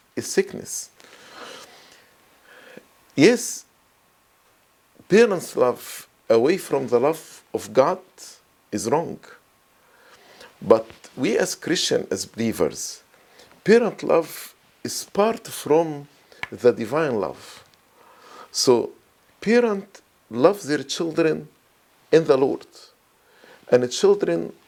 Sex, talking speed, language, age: male, 90 wpm, English, 50-69